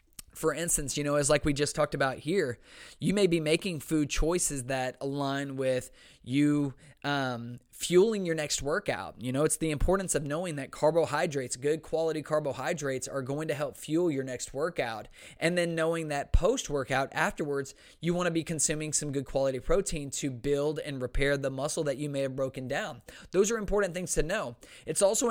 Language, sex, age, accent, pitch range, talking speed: English, male, 20-39, American, 135-165 Hz, 190 wpm